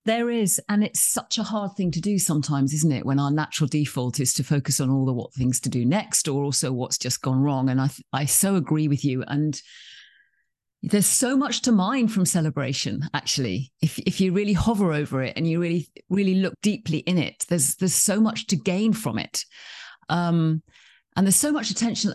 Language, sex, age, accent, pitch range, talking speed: English, female, 40-59, British, 140-190 Hz, 215 wpm